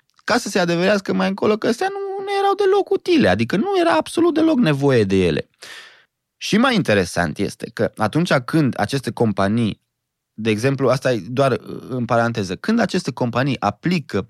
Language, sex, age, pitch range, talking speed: Romanian, male, 20-39, 105-170 Hz, 170 wpm